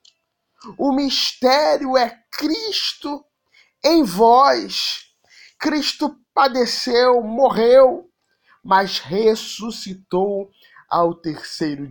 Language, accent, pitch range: Portuguese, Brazilian, 185-235 Hz